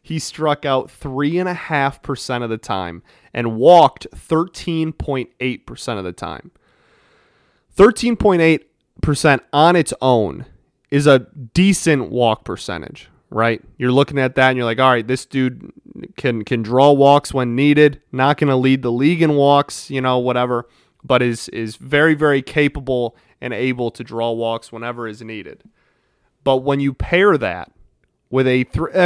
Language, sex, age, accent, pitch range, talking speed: English, male, 30-49, American, 120-150 Hz, 150 wpm